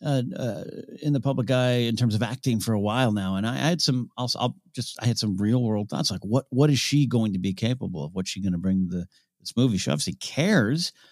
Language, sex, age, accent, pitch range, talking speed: English, male, 40-59, American, 100-140 Hz, 265 wpm